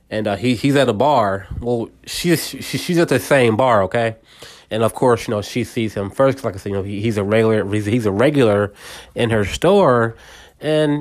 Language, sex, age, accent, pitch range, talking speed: English, male, 20-39, American, 110-140 Hz, 235 wpm